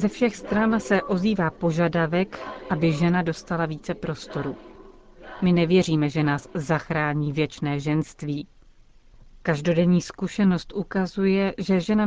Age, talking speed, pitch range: 40-59, 115 wpm, 155-190 Hz